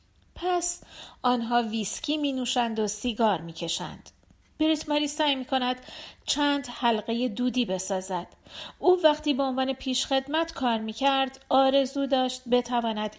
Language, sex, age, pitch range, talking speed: Persian, female, 40-59, 205-280 Hz, 120 wpm